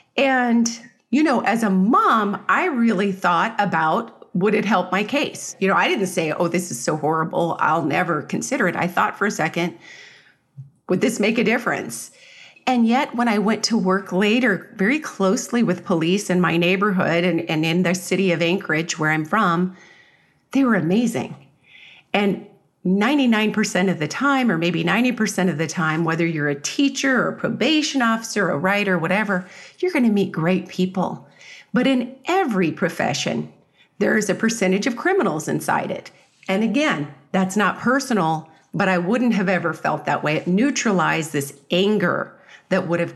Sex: female